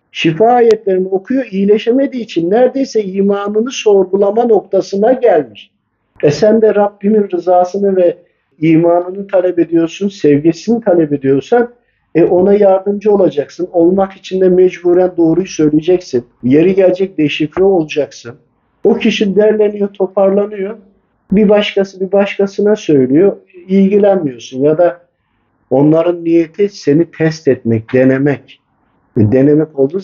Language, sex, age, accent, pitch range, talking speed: Turkish, male, 50-69, native, 145-200 Hz, 110 wpm